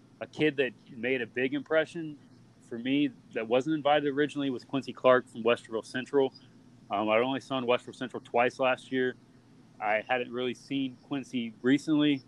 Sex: male